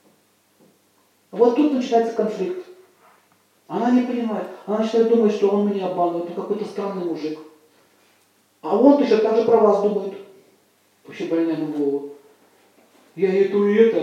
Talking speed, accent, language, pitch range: 145 wpm, native, Russian, 170-235 Hz